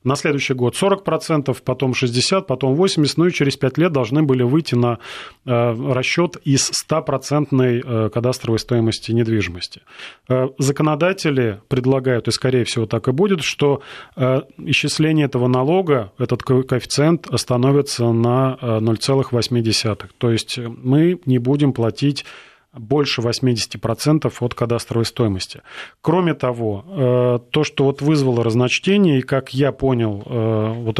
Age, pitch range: 30-49, 120-150 Hz